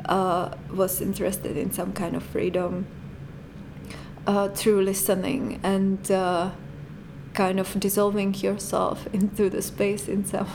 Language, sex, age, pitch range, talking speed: English, female, 20-39, 185-205 Hz, 125 wpm